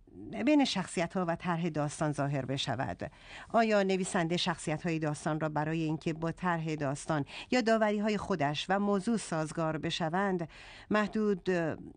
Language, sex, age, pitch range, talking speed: Persian, female, 50-69, 155-200 Hz, 140 wpm